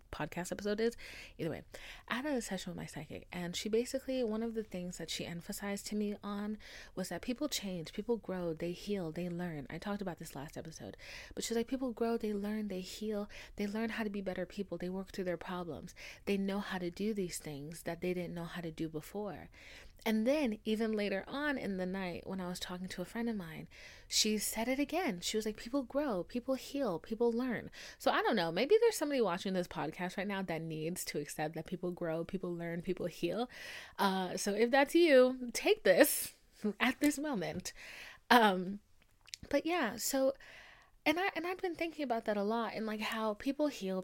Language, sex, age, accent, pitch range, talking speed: English, female, 30-49, American, 180-245 Hz, 215 wpm